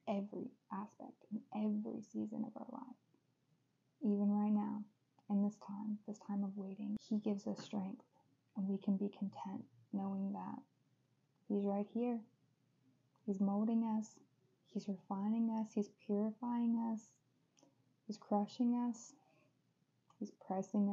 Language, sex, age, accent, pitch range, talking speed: English, female, 10-29, American, 145-210 Hz, 130 wpm